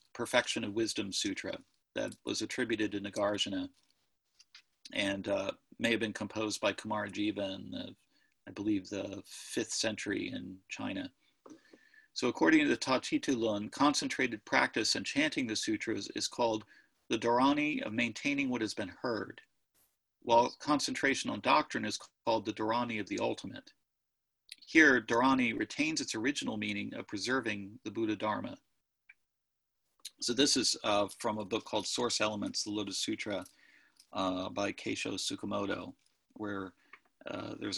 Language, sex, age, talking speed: English, male, 40-59, 140 wpm